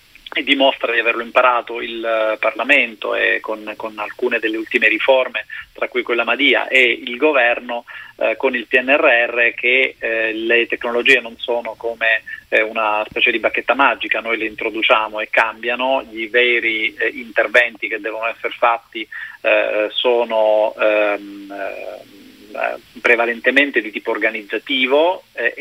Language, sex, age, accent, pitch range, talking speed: Italian, male, 40-59, native, 115-140 Hz, 135 wpm